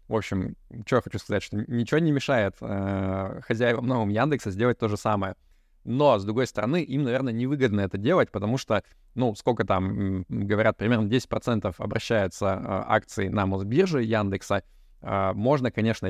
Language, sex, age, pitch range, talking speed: Russian, male, 20-39, 100-115 Hz, 170 wpm